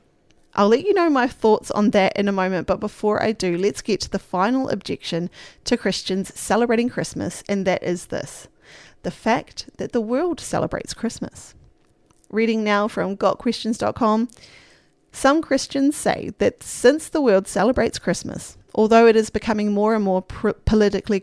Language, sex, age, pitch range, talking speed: English, female, 30-49, 190-235 Hz, 160 wpm